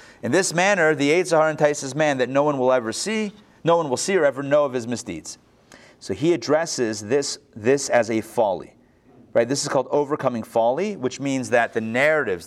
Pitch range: 125-180 Hz